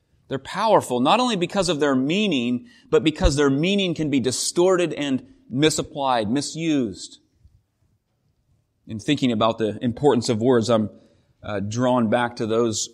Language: English